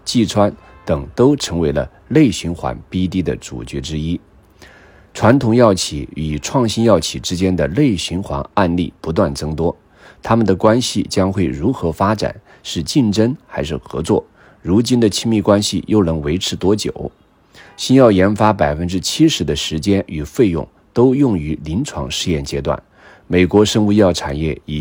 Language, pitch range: Chinese, 80-110 Hz